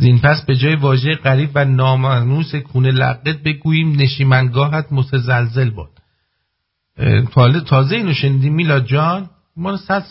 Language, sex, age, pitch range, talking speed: English, male, 50-69, 105-155 Hz, 125 wpm